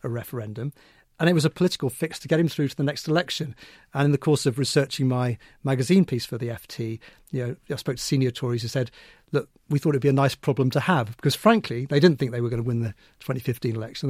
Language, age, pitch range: English, 40-59, 125-150 Hz